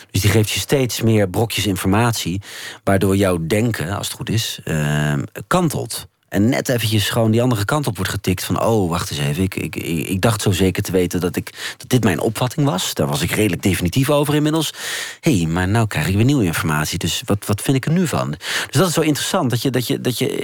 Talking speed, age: 240 wpm, 40-59